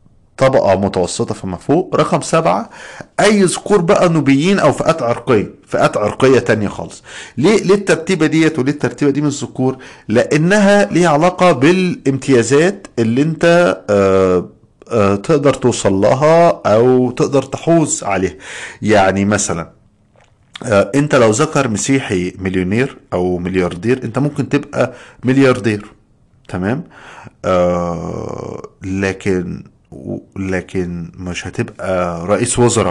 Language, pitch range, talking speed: Arabic, 95-135 Hz, 110 wpm